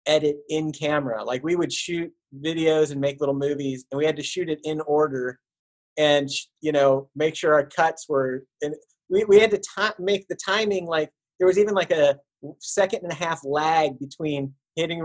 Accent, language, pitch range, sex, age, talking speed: American, English, 135-165 Hz, male, 30-49, 195 wpm